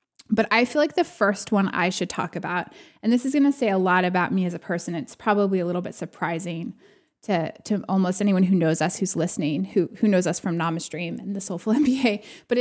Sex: female